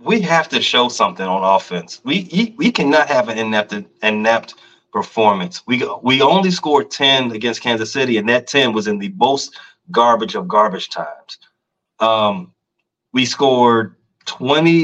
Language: English